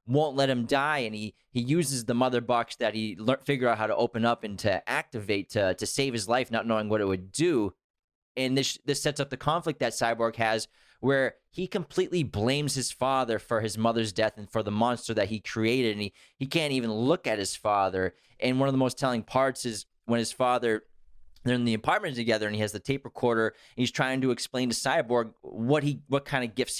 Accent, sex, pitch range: American, male, 110-130 Hz